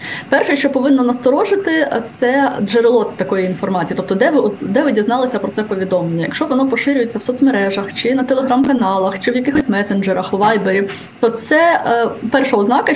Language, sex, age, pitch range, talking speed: Ukrainian, female, 20-39, 205-260 Hz, 155 wpm